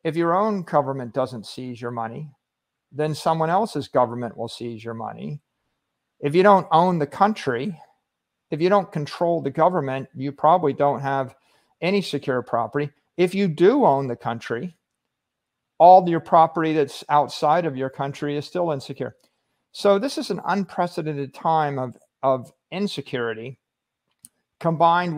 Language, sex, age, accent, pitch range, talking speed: Italian, male, 50-69, American, 130-160 Hz, 150 wpm